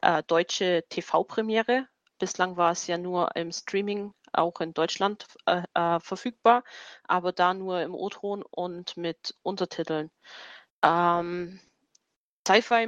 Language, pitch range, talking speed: German, 180-215 Hz, 115 wpm